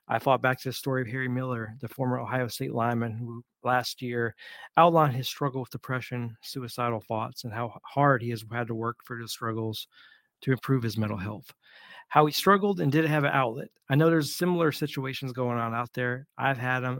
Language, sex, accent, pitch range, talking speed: English, male, American, 115-140 Hz, 210 wpm